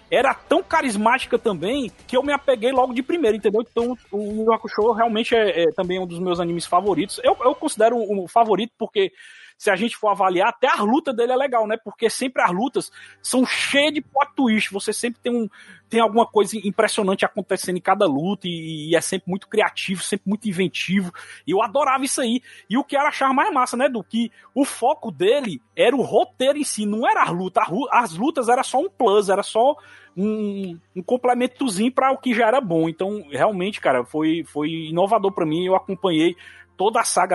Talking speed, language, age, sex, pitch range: 205 wpm, Portuguese, 20-39, male, 190-255 Hz